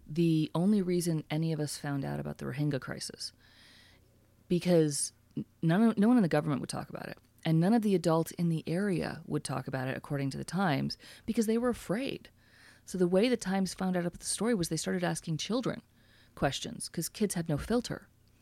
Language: English